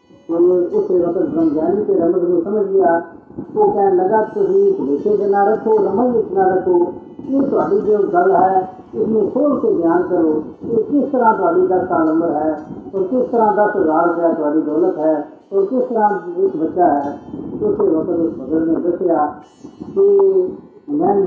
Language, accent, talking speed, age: Hindi, native, 160 wpm, 50-69